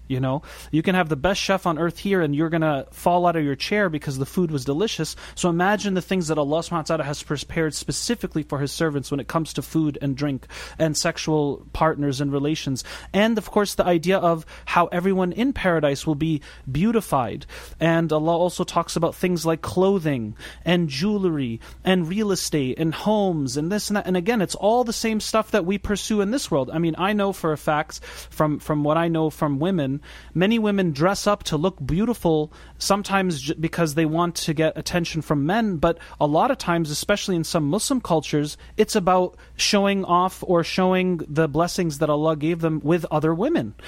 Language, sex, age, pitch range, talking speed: English, male, 30-49, 150-185 Hz, 205 wpm